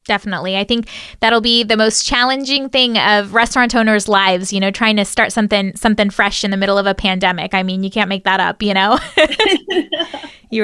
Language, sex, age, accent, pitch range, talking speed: English, female, 20-39, American, 200-240 Hz, 210 wpm